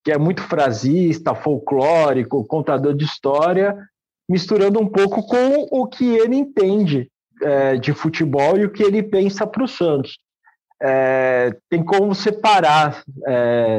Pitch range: 140-190 Hz